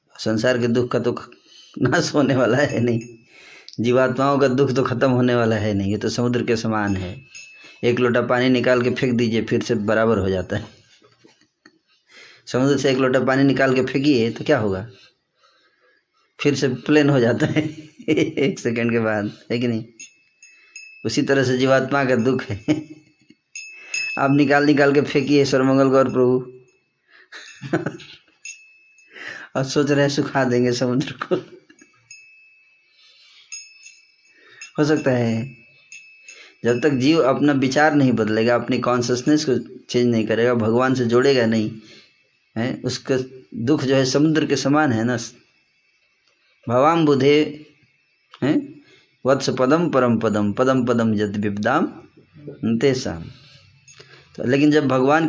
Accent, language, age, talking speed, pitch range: native, Hindi, 20-39, 140 wpm, 120-145 Hz